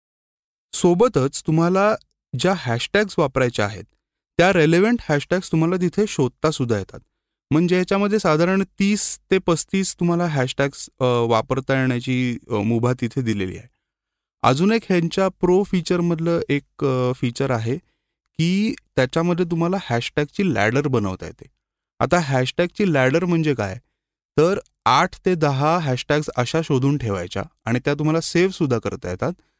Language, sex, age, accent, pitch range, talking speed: Marathi, male, 30-49, native, 125-170 Hz, 85 wpm